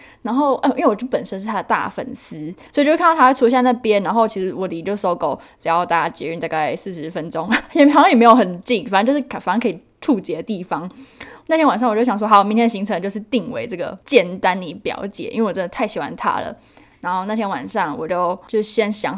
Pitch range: 190-255 Hz